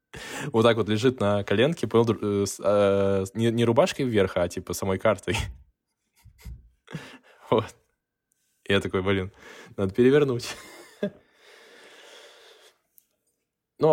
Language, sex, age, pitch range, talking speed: Russian, male, 10-29, 95-120 Hz, 100 wpm